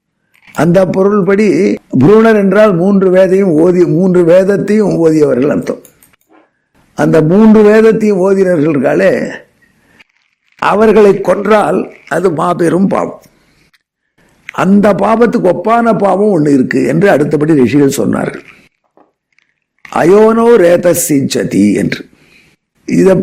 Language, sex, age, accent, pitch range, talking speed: Tamil, male, 60-79, native, 170-205 Hz, 95 wpm